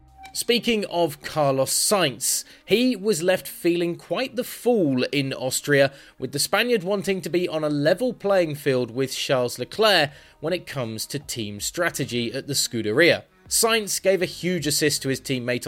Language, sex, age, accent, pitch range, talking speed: English, male, 20-39, British, 120-165 Hz, 170 wpm